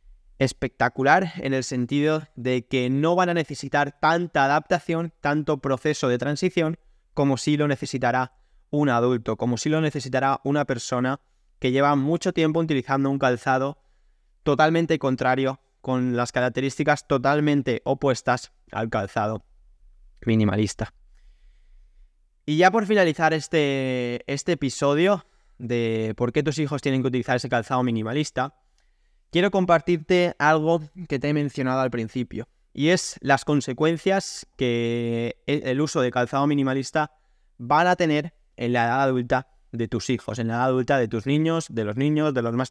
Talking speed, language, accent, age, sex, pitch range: 150 wpm, Spanish, Spanish, 20-39, male, 125-150 Hz